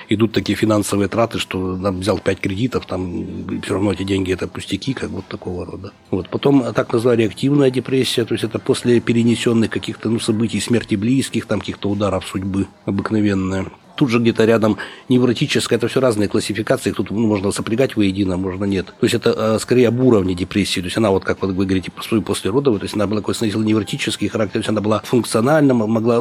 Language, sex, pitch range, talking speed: Russian, male, 95-115 Hz, 195 wpm